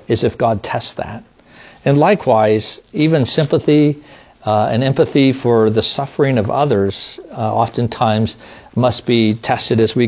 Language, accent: English, American